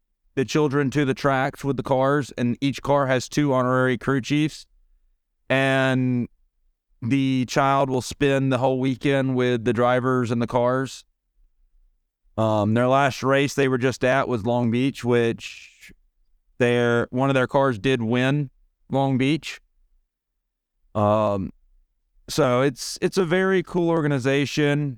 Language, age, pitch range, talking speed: English, 30-49, 115-140 Hz, 140 wpm